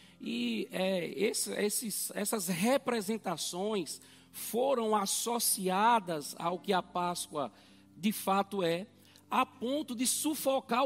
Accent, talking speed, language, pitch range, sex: Brazilian, 105 wpm, Portuguese, 200-240 Hz, male